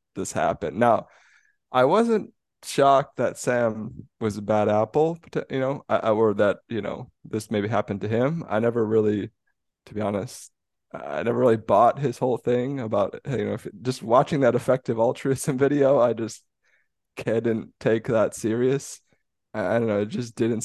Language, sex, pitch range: English, male, 110-130 Hz